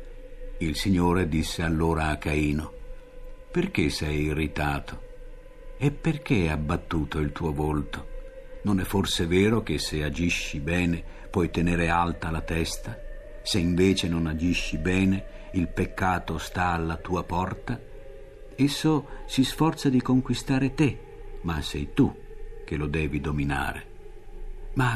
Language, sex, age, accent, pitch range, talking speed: Italian, male, 60-79, native, 80-130 Hz, 130 wpm